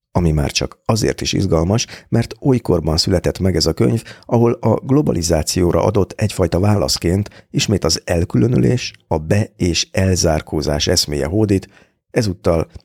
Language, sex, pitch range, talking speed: Hungarian, male, 80-95 Hz, 135 wpm